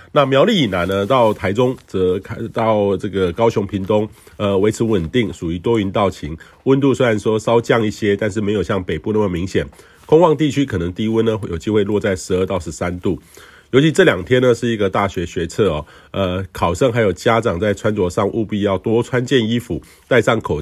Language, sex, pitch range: Chinese, male, 95-115 Hz